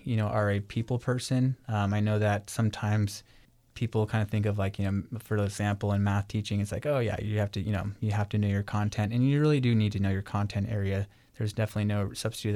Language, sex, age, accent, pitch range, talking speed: English, male, 20-39, American, 100-115 Hz, 255 wpm